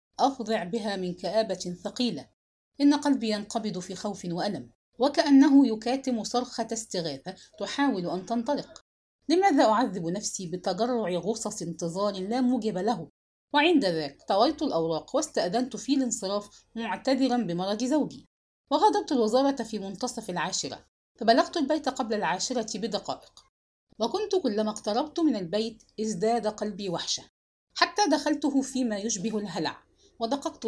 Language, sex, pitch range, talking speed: English, female, 190-270 Hz, 120 wpm